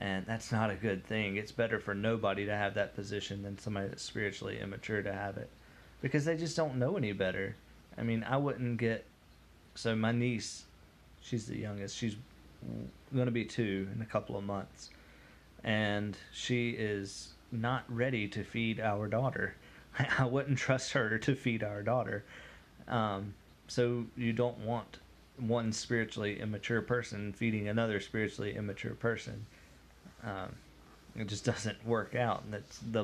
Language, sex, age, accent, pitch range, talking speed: English, male, 30-49, American, 100-120 Hz, 165 wpm